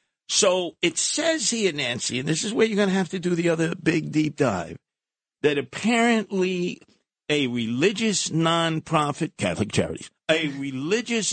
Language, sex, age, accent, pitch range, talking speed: English, male, 50-69, American, 125-165 Hz, 155 wpm